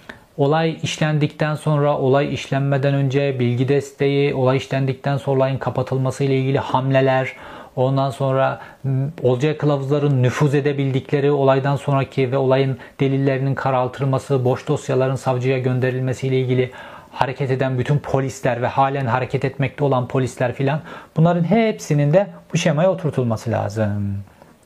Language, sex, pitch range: Turkish, male, 130-165 Hz